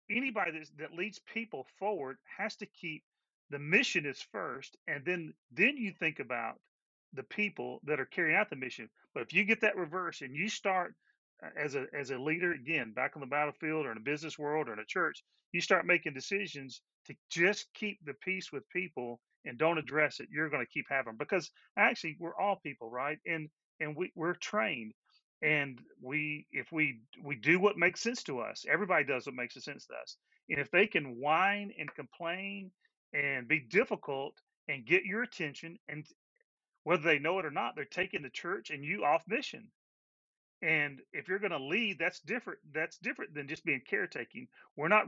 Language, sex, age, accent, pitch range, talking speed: English, male, 40-59, American, 150-205 Hz, 200 wpm